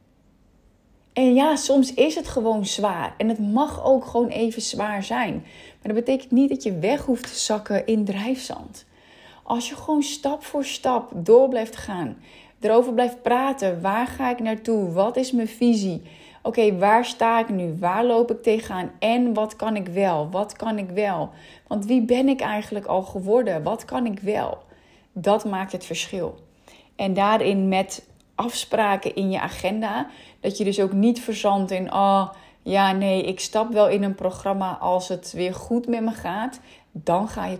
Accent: Dutch